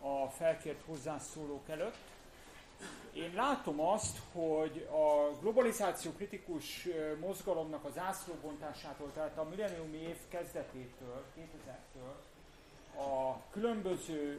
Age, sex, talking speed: 40-59, male, 90 wpm